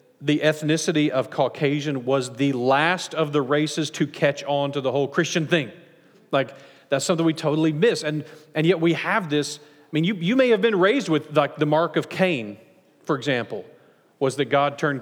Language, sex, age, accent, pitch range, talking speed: English, male, 40-59, American, 140-175 Hz, 200 wpm